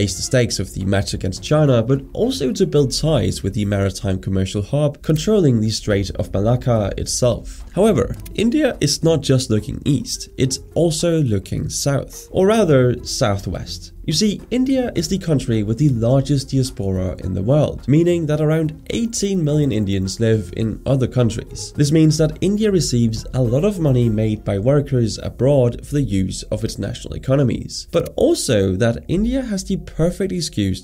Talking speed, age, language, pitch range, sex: 170 wpm, 20-39, English, 105-150 Hz, male